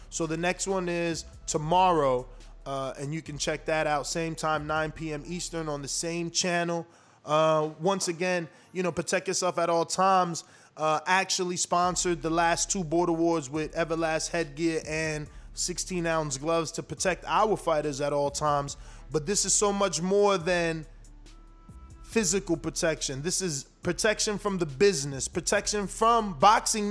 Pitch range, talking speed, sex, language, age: 155-195 Hz, 160 wpm, male, English, 20-39